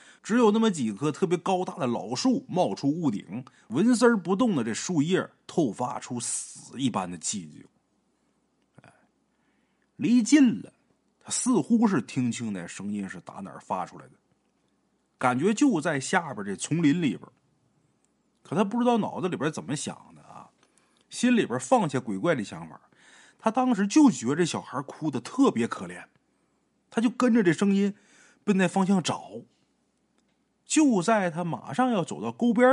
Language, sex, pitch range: Chinese, male, 150-235 Hz